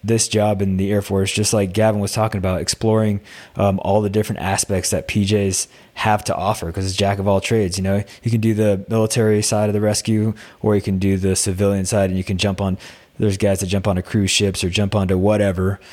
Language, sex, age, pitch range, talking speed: English, male, 20-39, 95-110 Hz, 225 wpm